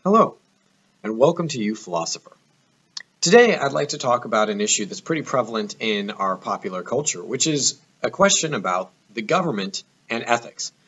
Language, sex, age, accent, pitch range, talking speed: English, male, 30-49, American, 115-175 Hz, 165 wpm